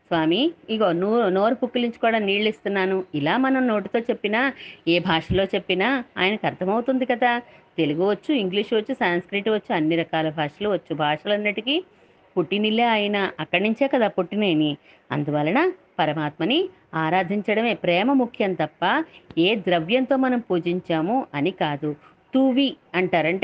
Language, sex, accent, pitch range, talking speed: Telugu, female, native, 170-250 Hz, 130 wpm